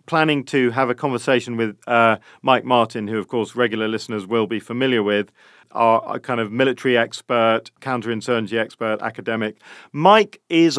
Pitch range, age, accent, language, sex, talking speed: 110-130 Hz, 40-59, British, English, male, 155 wpm